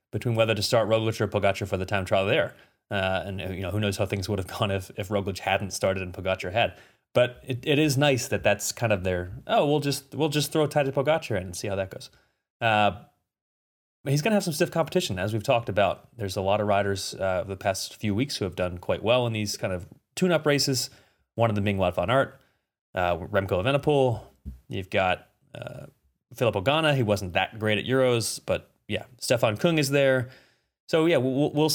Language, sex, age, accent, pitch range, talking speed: English, male, 30-49, American, 100-140 Hz, 225 wpm